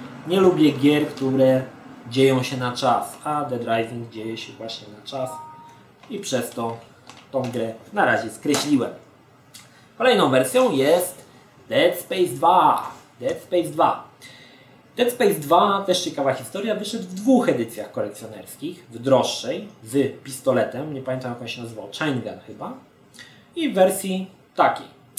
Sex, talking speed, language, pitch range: male, 140 wpm, Polish, 120-155 Hz